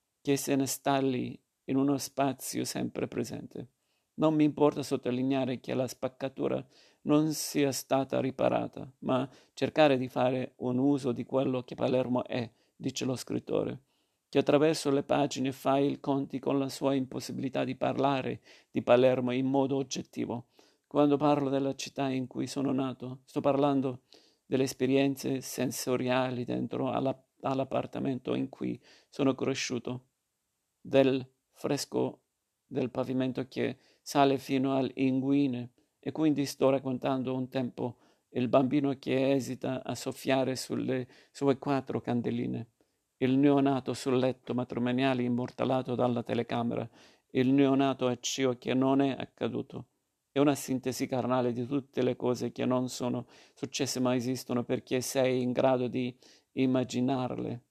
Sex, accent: male, native